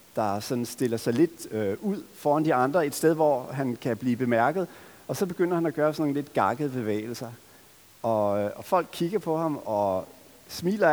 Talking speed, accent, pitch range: 190 wpm, native, 120-165 Hz